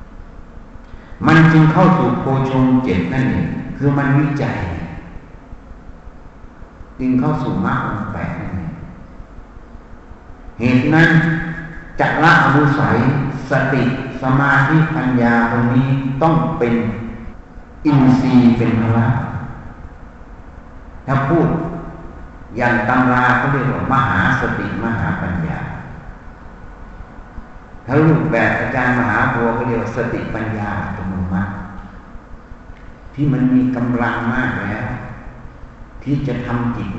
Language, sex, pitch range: Thai, male, 115-135 Hz